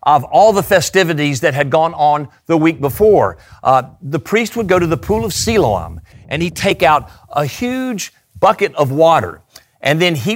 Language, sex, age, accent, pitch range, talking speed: English, male, 50-69, American, 140-200 Hz, 190 wpm